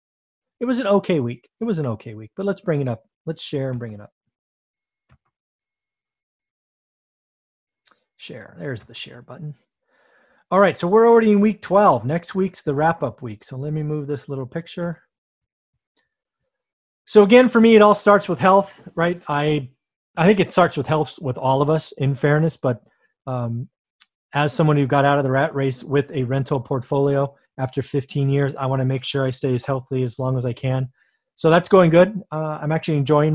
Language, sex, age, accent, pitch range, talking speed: English, male, 30-49, American, 130-165 Hz, 195 wpm